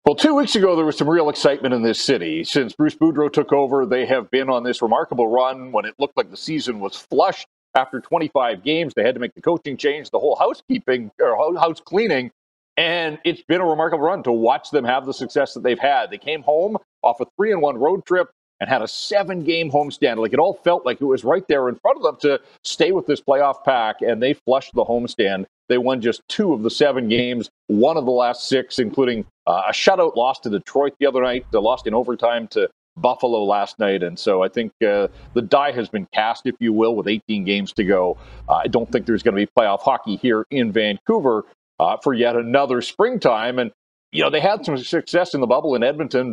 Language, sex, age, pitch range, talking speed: English, male, 40-59, 120-160 Hz, 235 wpm